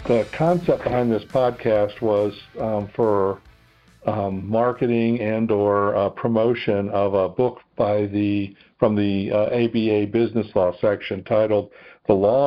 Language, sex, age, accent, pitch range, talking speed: English, male, 50-69, American, 100-115 Hz, 140 wpm